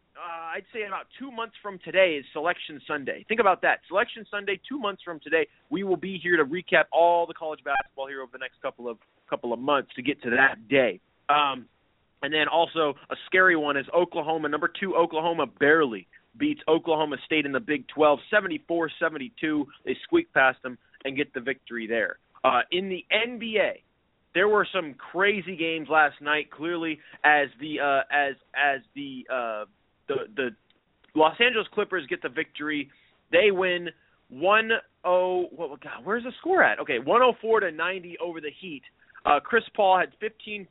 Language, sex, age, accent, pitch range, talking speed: English, male, 30-49, American, 145-205 Hz, 190 wpm